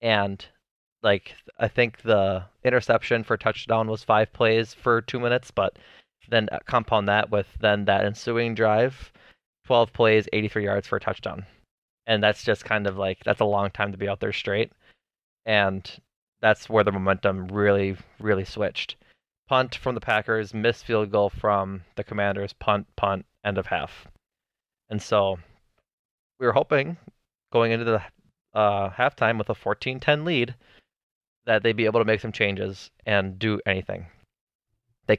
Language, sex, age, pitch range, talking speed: English, male, 20-39, 100-115 Hz, 160 wpm